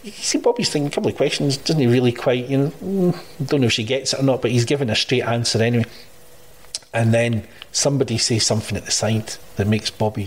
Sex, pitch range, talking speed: male, 110-135 Hz, 235 wpm